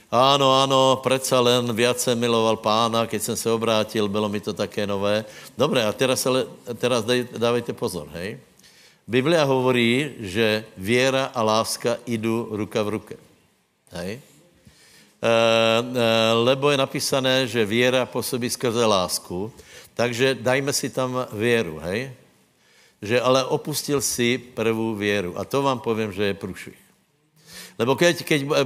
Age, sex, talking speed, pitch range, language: 60-79, male, 135 wpm, 115-130 Hz, Slovak